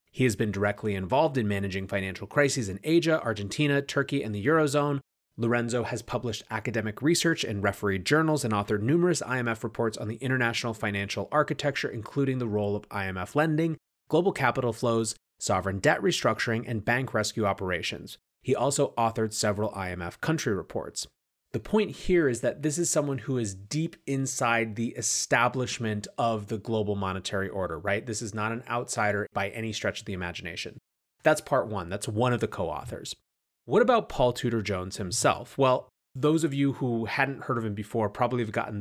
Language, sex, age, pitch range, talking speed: English, male, 30-49, 100-130 Hz, 180 wpm